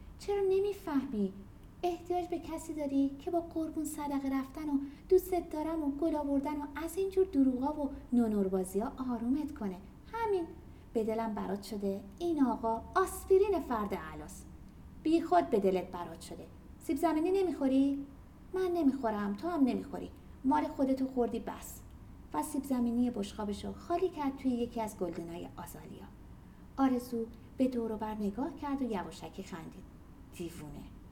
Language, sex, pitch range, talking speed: Persian, female, 205-320 Hz, 140 wpm